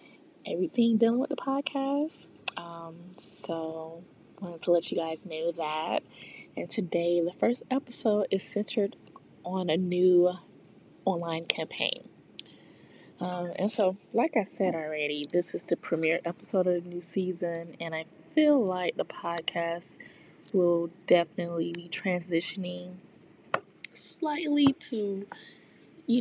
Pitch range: 165-190 Hz